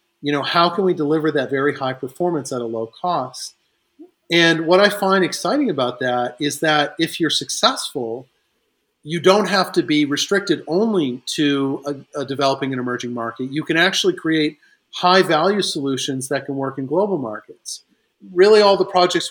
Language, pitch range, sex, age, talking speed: English, 135-165 Hz, male, 40-59, 175 wpm